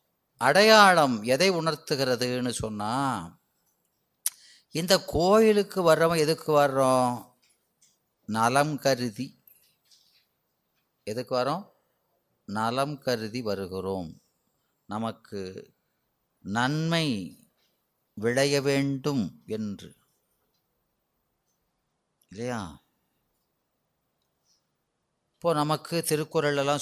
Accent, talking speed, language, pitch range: native, 55 wpm, Tamil, 125-165 Hz